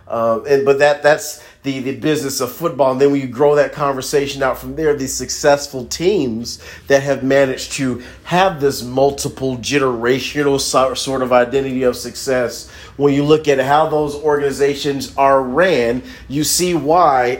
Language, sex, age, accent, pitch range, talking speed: English, male, 40-59, American, 125-150 Hz, 165 wpm